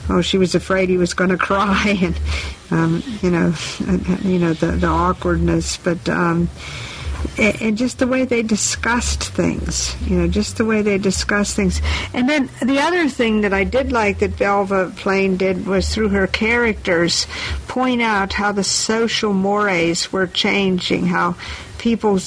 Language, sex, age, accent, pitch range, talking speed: English, female, 50-69, American, 130-200 Hz, 165 wpm